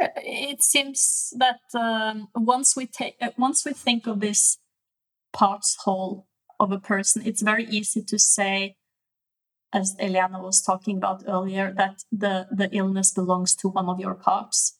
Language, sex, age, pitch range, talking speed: English, female, 20-39, 190-225 Hz, 155 wpm